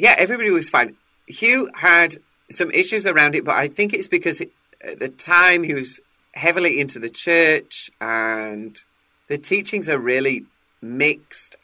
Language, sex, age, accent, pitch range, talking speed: English, male, 30-49, British, 110-170 Hz, 155 wpm